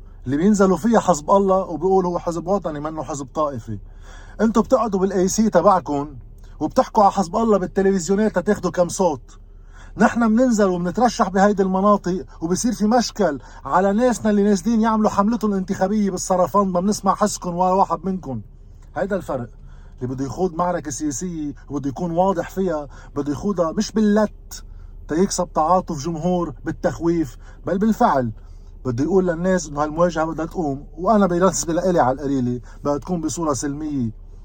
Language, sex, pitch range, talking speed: Arabic, male, 130-185 Hz, 145 wpm